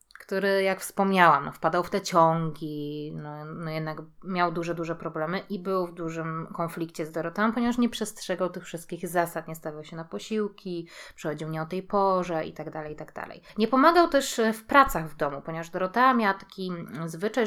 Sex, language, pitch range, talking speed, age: female, Polish, 165-215 Hz, 180 wpm, 20-39